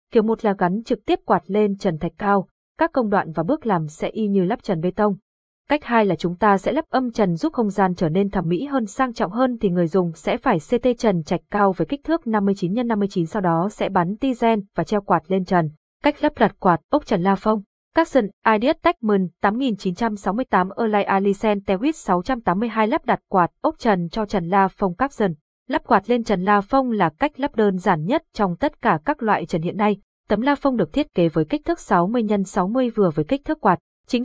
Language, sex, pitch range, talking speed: Vietnamese, female, 190-250 Hz, 235 wpm